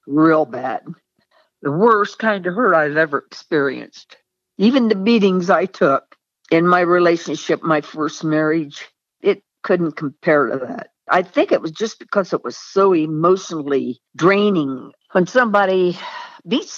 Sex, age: female, 60-79